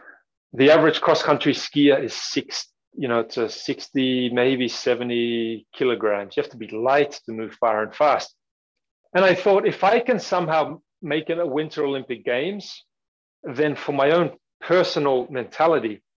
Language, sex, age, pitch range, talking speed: English, male, 40-59, 125-160 Hz, 155 wpm